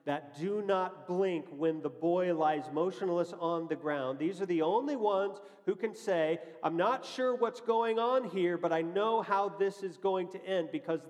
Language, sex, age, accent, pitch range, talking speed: English, male, 40-59, American, 145-195 Hz, 200 wpm